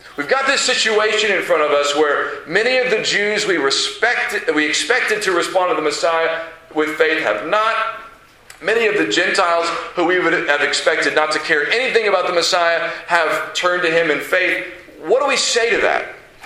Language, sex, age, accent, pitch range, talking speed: English, male, 40-59, American, 160-225 Hz, 195 wpm